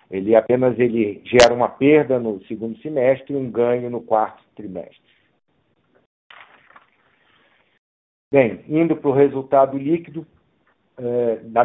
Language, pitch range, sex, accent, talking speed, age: Portuguese, 110-130 Hz, male, Brazilian, 110 wpm, 50-69